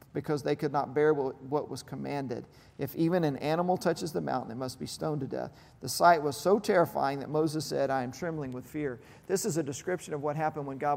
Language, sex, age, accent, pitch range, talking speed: English, male, 40-59, American, 145-195 Hz, 240 wpm